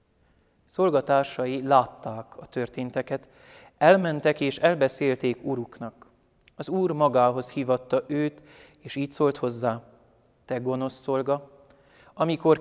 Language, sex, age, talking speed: Hungarian, male, 30-49, 100 wpm